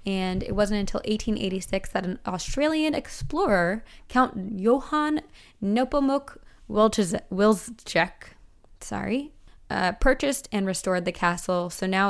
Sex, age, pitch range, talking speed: female, 20-39, 175-210 Hz, 105 wpm